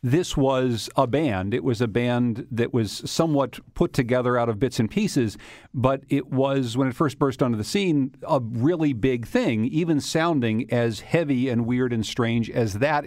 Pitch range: 115-140 Hz